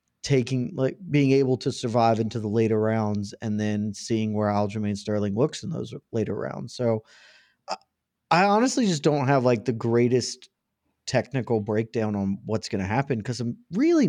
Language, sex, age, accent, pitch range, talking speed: English, male, 30-49, American, 110-140 Hz, 170 wpm